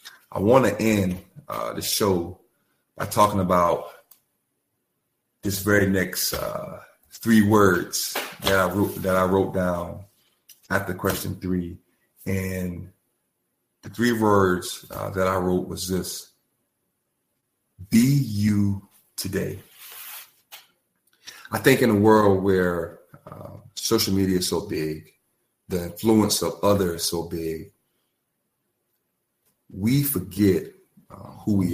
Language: English